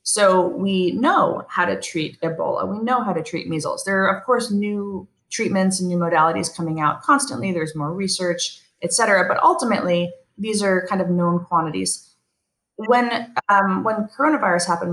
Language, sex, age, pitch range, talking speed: English, female, 20-39, 165-195 Hz, 175 wpm